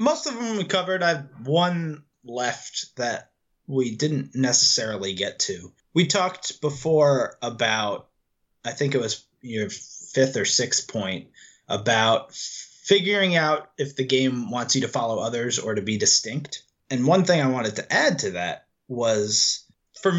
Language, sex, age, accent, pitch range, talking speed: English, male, 20-39, American, 115-160 Hz, 160 wpm